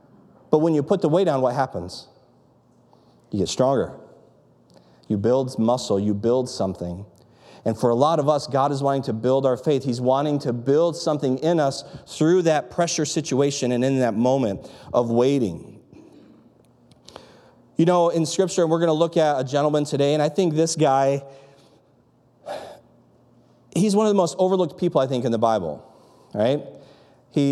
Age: 30-49